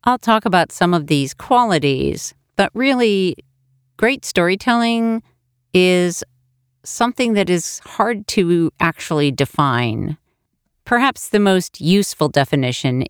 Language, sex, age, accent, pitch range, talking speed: English, female, 50-69, American, 145-205 Hz, 110 wpm